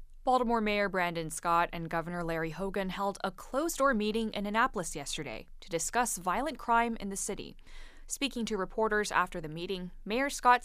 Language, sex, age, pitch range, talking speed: English, female, 20-39, 175-245 Hz, 170 wpm